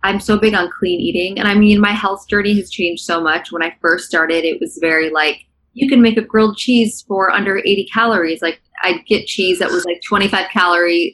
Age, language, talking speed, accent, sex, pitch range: 20-39, English, 230 wpm, American, female, 165-200 Hz